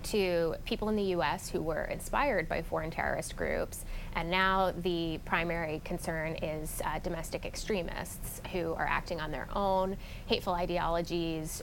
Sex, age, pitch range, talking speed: female, 20-39, 175-200 Hz, 150 wpm